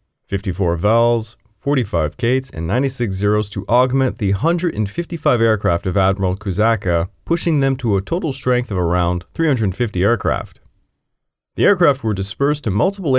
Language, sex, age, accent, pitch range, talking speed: English, male, 20-39, American, 95-130 Hz, 140 wpm